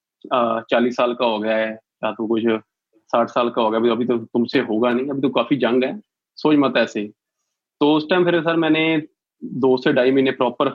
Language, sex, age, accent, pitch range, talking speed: Hindi, male, 20-39, native, 120-145 Hz, 220 wpm